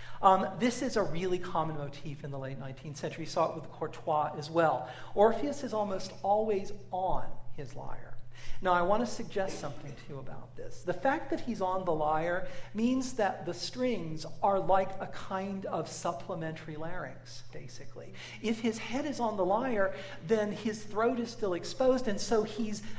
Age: 40-59